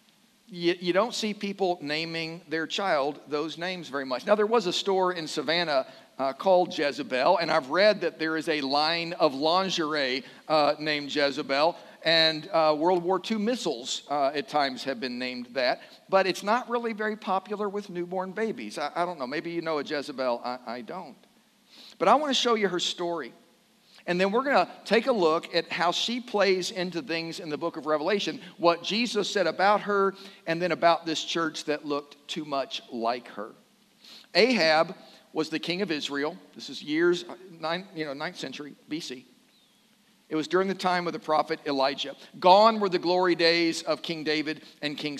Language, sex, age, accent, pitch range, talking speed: English, male, 50-69, American, 155-205 Hz, 185 wpm